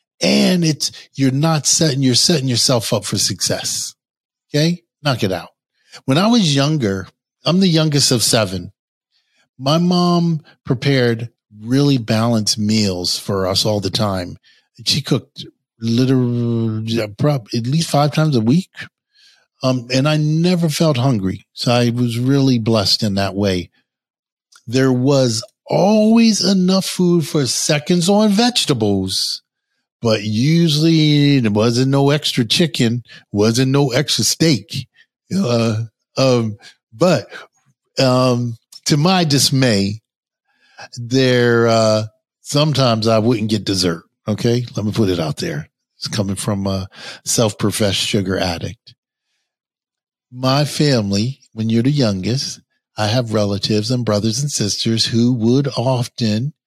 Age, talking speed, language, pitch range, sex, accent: 50-69, 130 wpm, English, 110-150 Hz, male, American